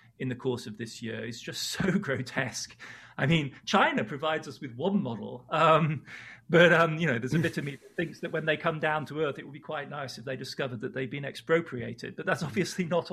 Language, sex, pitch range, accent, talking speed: English, male, 130-165 Hz, British, 245 wpm